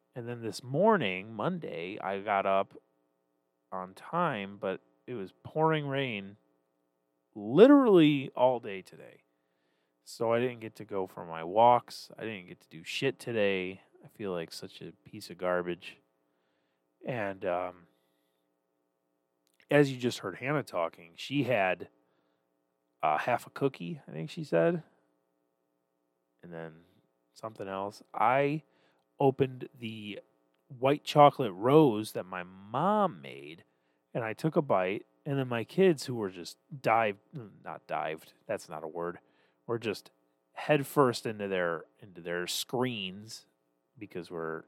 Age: 30-49